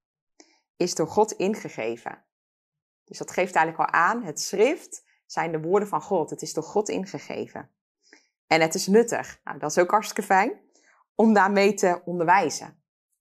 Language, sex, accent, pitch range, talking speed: Dutch, female, Dutch, 160-210 Hz, 160 wpm